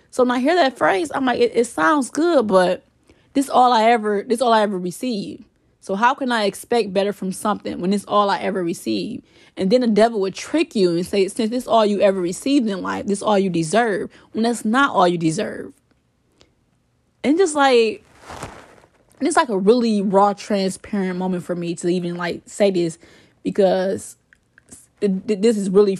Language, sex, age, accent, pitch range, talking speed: English, female, 20-39, American, 190-240 Hz, 205 wpm